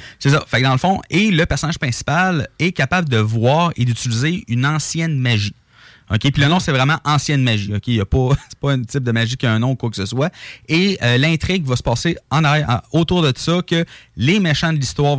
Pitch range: 115-145 Hz